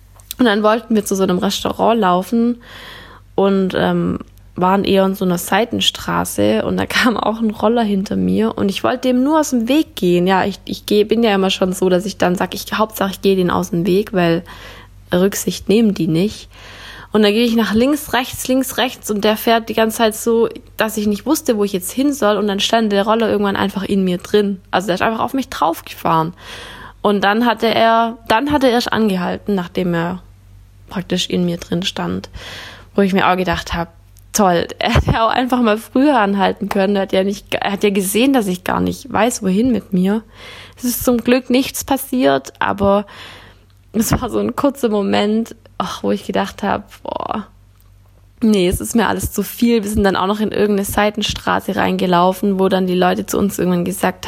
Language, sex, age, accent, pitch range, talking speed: German, female, 20-39, German, 170-220 Hz, 210 wpm